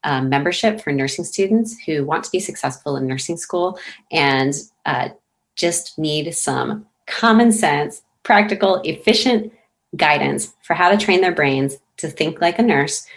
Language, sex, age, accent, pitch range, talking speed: English, female, 30-49, American, 140-180 Hz, 155 wpm